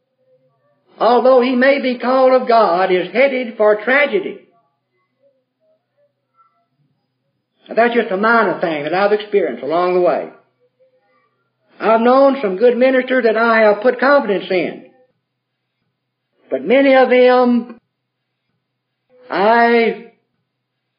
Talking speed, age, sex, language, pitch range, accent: 110 wpm, 50-69, male, English, 205-255 Hz, American